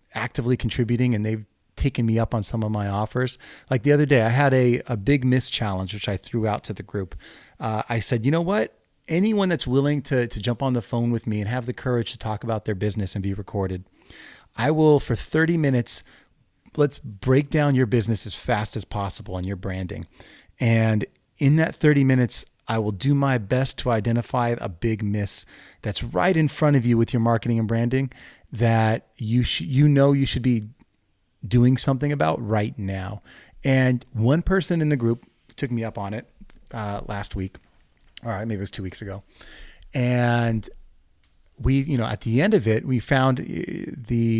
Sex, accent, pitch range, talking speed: male, American, 105-135 Hz, 200 wpm